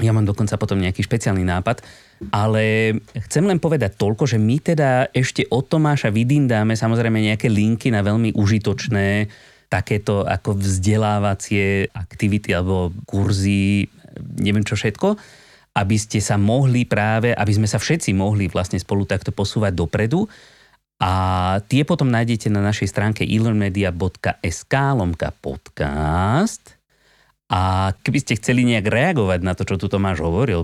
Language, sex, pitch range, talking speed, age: Slovak, male, 100-130 Hz, 145 wpm, 30-49